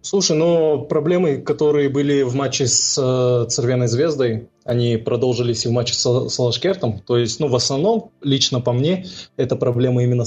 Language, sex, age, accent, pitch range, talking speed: Russian, male, 20-39, native, 115-140 Hz, 165 wpm